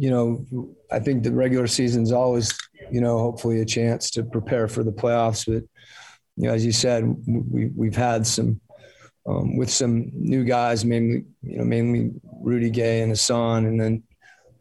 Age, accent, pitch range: 30-49, American, 110-120 Hz